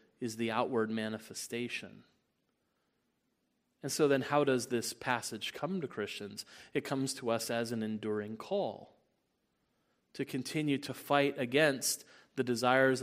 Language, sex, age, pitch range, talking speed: English, male, 30-49, 115-145 Hz, 135 wpm